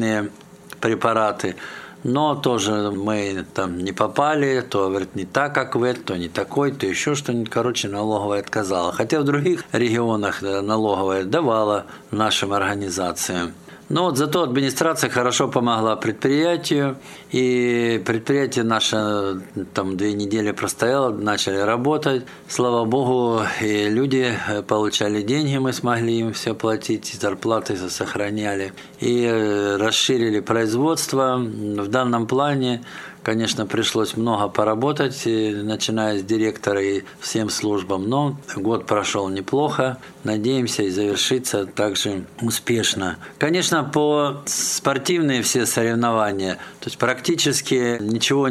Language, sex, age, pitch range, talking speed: Russian, male, 50-69, 105-135 Hz, 115 wpm